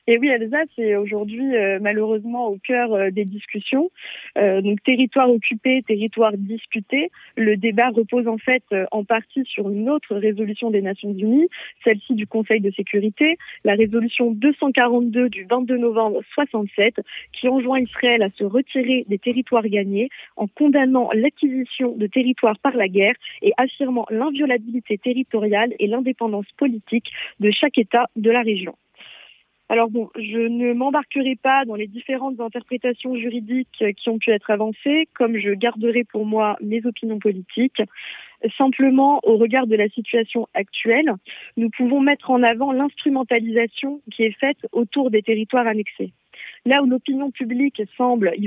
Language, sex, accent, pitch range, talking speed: French, female, French, 215-260 Hz, 155 wpm